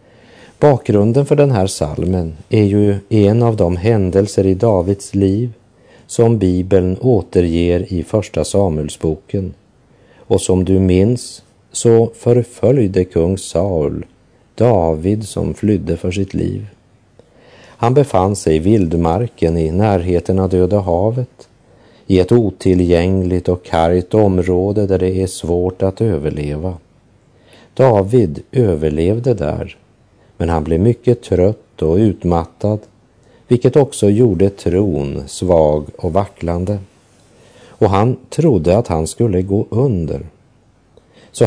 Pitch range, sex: 90-115 Hz, male